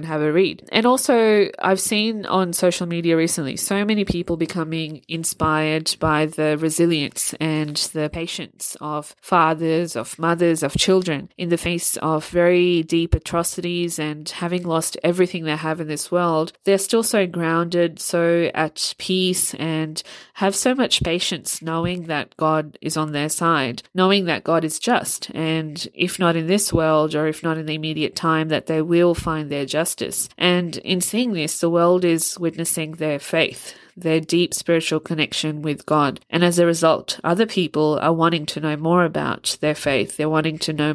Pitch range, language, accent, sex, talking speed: 155-175 Hz, English, Australian, female, 175 wpm